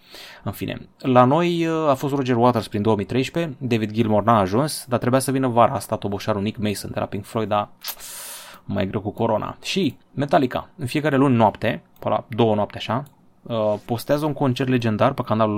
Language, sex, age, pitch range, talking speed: Romanian, male, 20-39, 105-130 Hz, 190 wpm